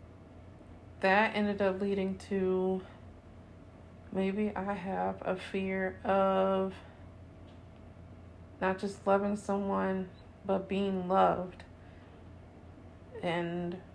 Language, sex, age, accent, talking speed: English, female, 30-49, American, 80 wpm